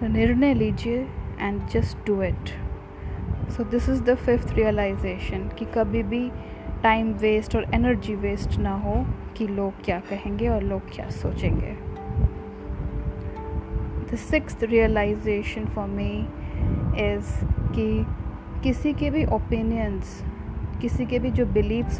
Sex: female